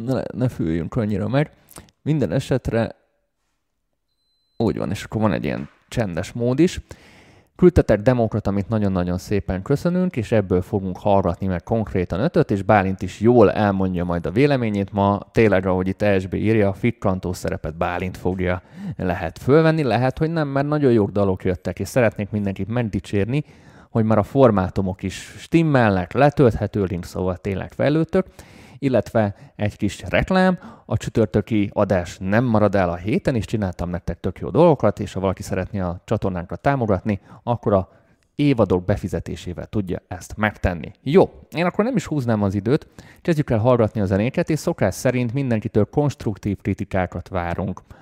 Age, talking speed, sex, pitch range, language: 20-39, 155 wpm, male, 95-125 Hz, Hungarian